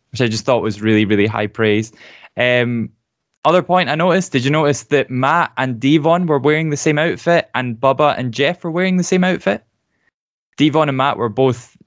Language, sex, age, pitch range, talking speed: English, male, 10-29, 115-150 Hz, 200 wpm